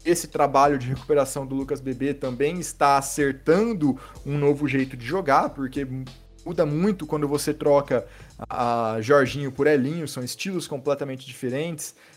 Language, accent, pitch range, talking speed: Portuguese, Brazilian, 135-175 Hz, 145 wpm